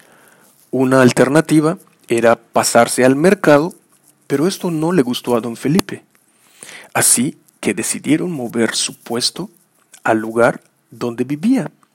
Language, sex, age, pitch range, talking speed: Spanish, male, 40-59, 115-160 Hz, 120 wpm